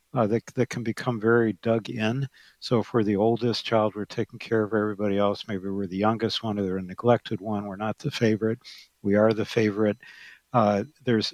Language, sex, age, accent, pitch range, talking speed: English, male, 60-79, American, 110-125 Hz, 210 wpm